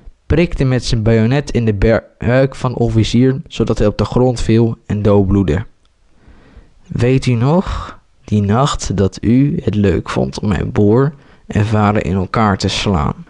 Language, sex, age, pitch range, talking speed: Dutch, male, 20-39, 100-125 Hz, 170 wpm